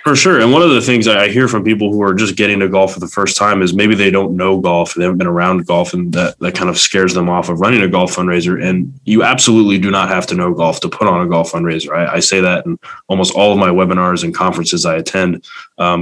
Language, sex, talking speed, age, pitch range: English, male, 280 wpm, 20-39, 90-100 Hz